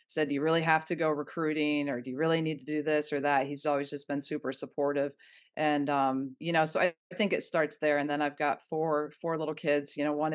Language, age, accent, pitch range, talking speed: English, 30-49, American, 145-155 Hz, 260 wpm